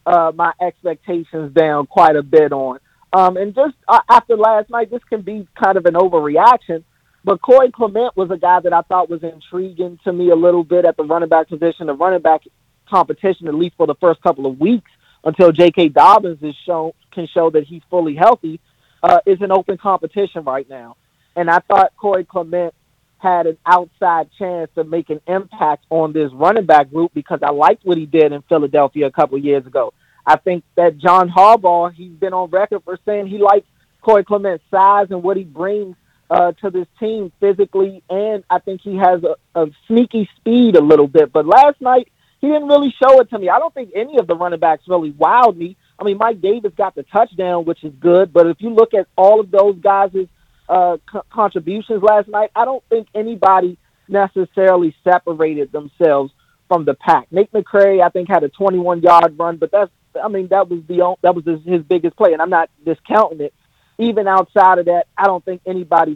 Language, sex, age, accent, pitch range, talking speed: English, male, 30-49, American, 165-200 Hz, 200 wpm